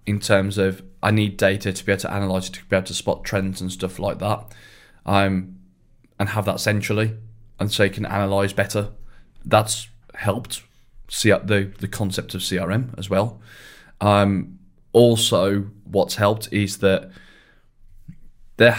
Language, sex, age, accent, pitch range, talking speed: English, male, 20-39, British, 95-110 Hz, 160 wpm